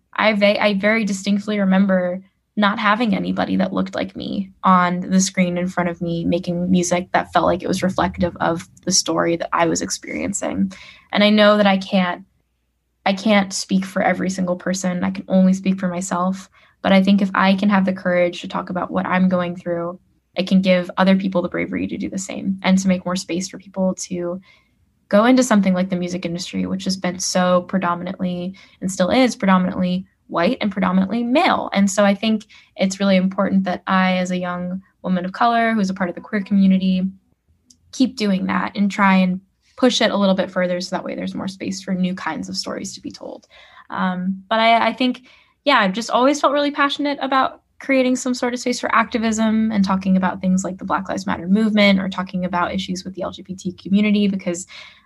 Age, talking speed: 10-29, 215 wpm